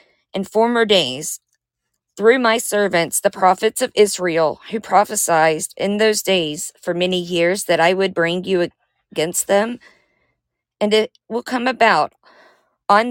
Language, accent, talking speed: English, American, 140 wpm